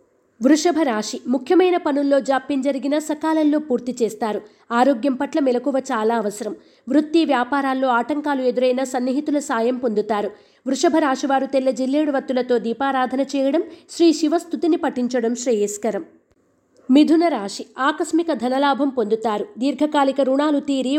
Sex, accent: female, native